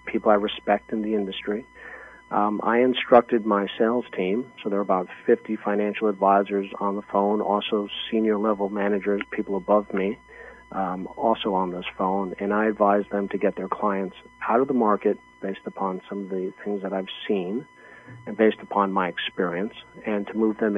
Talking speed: 185 wpm